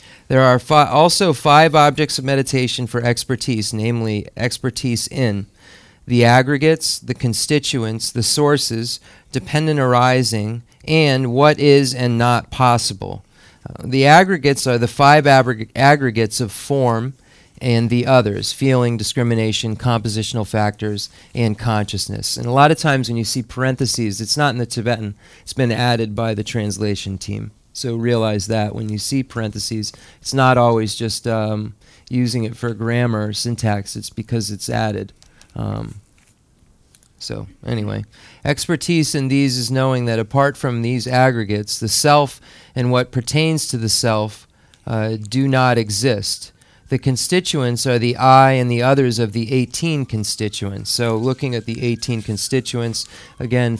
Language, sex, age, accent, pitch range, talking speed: English, male, 40-59, American, 110-130 Hz, 145 wpm